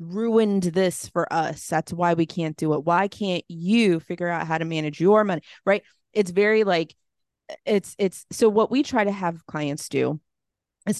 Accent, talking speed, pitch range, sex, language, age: American, 190 wpm, 155-195 Hz, female, English, 30-49